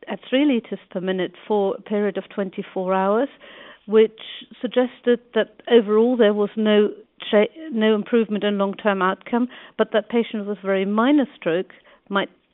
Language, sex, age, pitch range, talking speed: English, female, 50-69, 195-225 Hz, 155 wpm